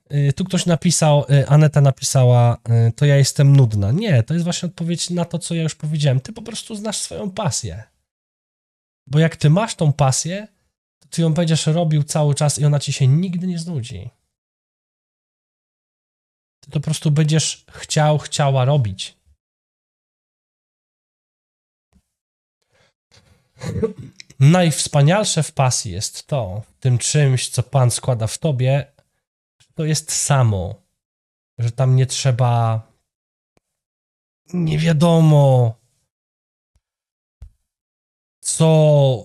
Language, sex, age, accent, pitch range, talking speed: Polish, male, 20-39, native, 130-175 Hz, 115 wpm